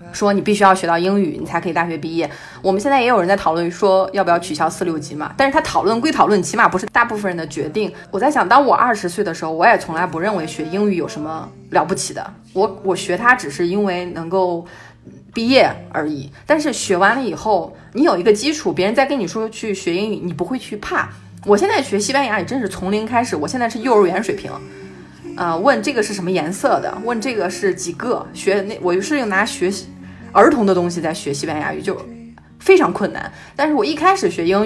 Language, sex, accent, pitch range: Chinese, female, native, 170-220 Hz